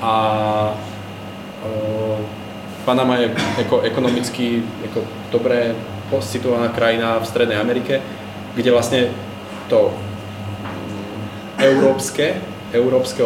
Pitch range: 105-120 Hz